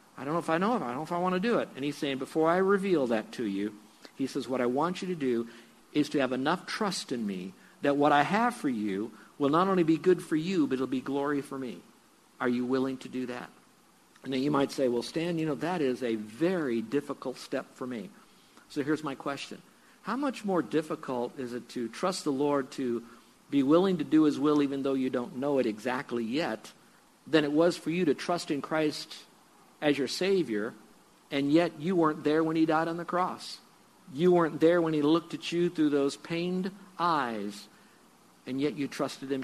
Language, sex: English, male